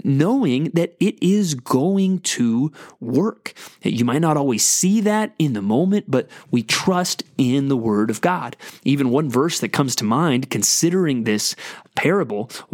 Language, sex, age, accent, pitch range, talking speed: English, male, 30-49, American, 120-160 Hz, 160 wpm